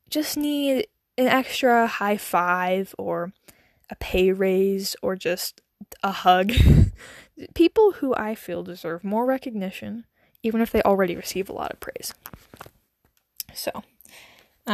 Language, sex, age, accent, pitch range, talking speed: English, female, 10-29, American, 180-230 Hz, 130 wpm